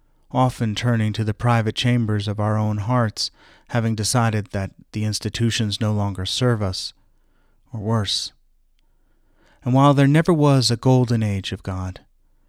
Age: 30-49